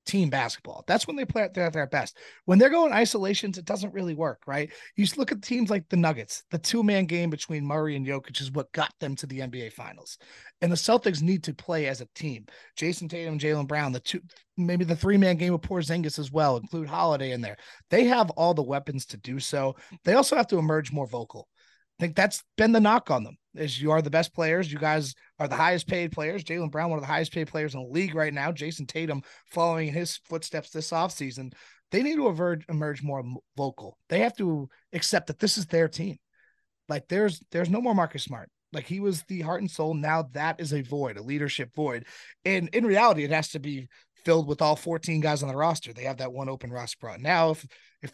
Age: 30-49